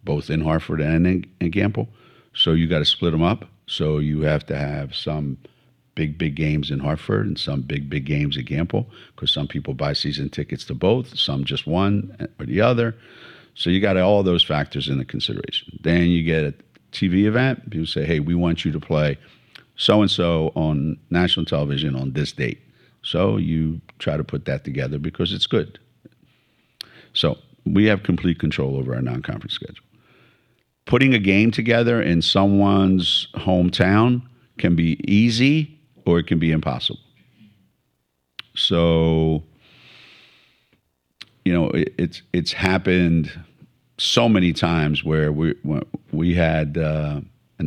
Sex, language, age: male, English, 50-69